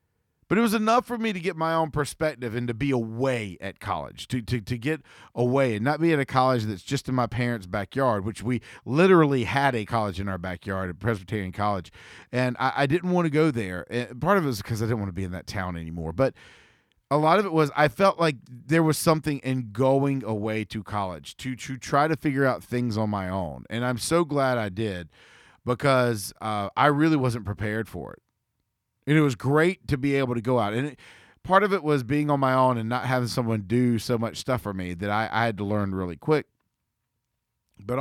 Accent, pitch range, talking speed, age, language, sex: American, 105-145 Hz, 235 wpm, 40-59, English, male